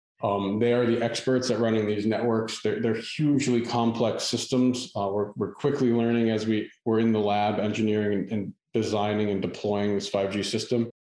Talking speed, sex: 185 wpm, male